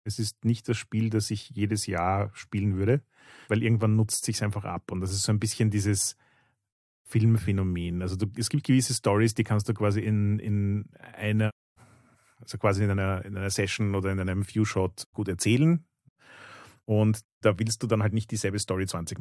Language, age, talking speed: German, 40-59, 190 wpm